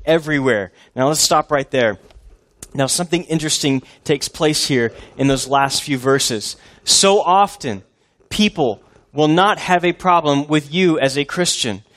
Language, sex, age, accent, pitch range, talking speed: English, male, 30-49, American, 135-180 Hz, 150 wpm